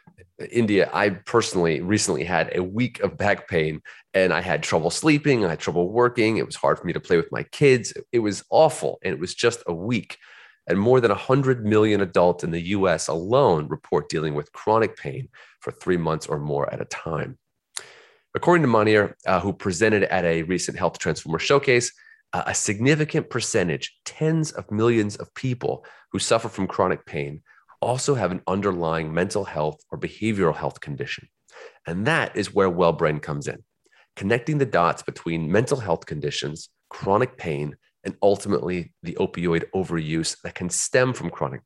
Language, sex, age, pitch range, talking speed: English, male, 30-49, 90-120 Hz, 175 wpm